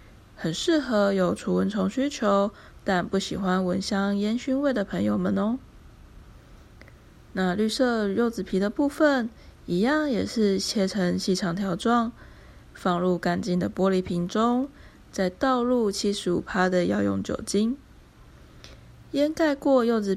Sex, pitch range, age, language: female, 185-230 Hz, 20-39, Chinese